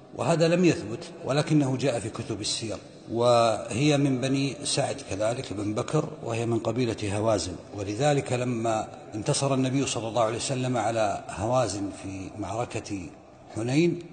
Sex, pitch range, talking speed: male, 115-150 Hz, 135 wpm